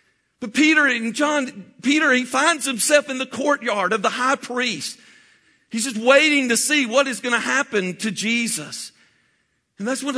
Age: 50-69